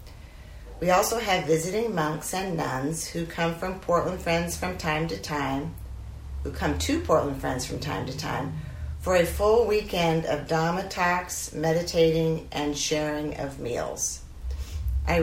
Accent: American